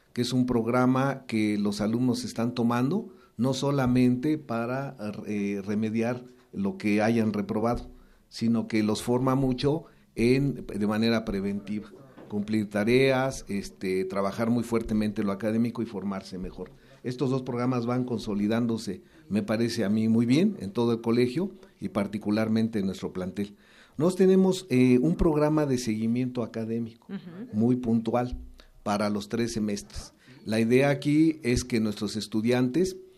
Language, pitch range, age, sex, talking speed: Spanish, 110-130 Hz, 50-69, male, 140 wpm